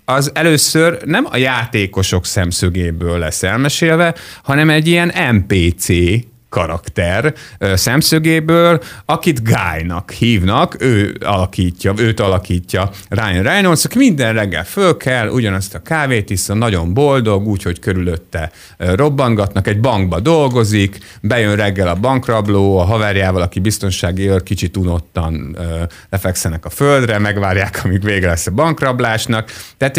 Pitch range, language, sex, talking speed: 90-125 Hz, Hungarian, male, 120 wpm